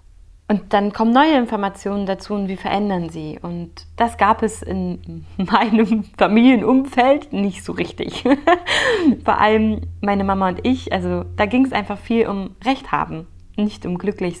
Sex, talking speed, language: female, 160 wpm, German